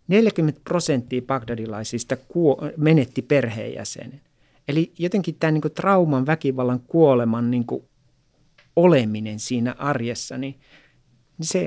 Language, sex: Finnish, male